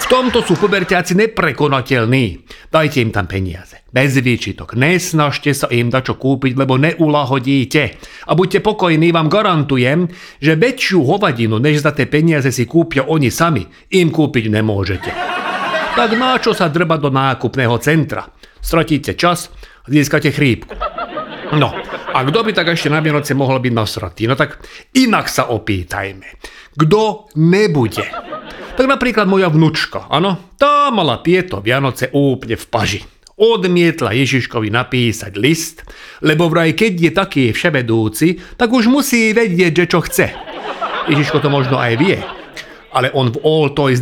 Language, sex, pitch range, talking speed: Slovak, male, 130-175 Hz, 145 wpm